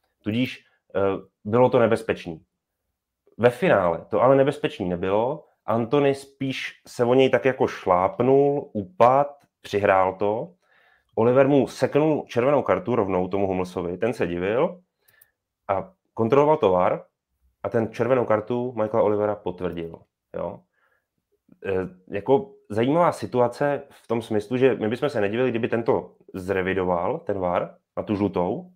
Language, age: Czech, 30-49